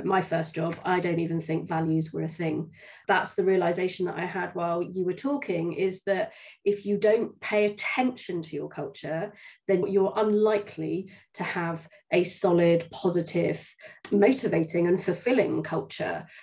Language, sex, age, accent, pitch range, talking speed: English, female, 30-49, British, 170-200 Hz, 155 wpm